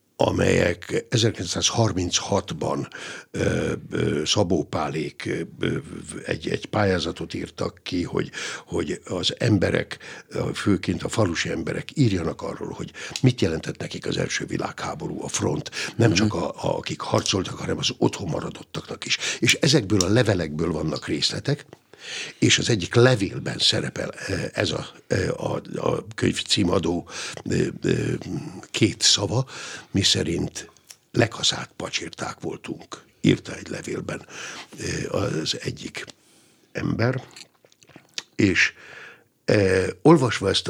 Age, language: 60-79, Hungarian